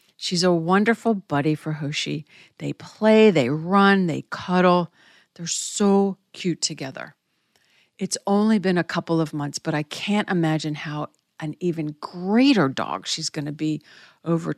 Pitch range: 160-200 Hz